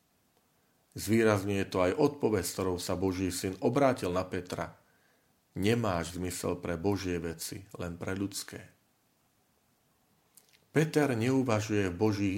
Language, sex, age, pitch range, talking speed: Slovak, male, 40-59, 90-115 Hz, 110 wpm